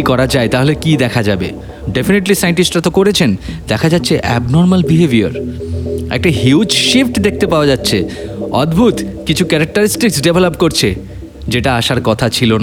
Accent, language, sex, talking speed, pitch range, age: native, Bengali, male, 70 wpm, 110-180 Hz, 30-49